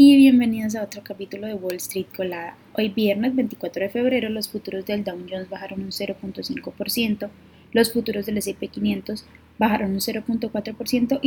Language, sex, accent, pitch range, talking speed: Spanish, female, Colombian, 195-235 Hz, 160 wpm